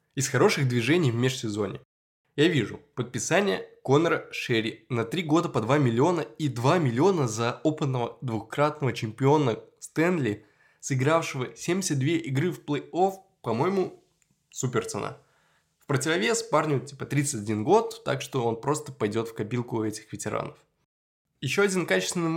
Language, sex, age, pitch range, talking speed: Russian, male, 20-39, 125-165 Hz, 135 wpm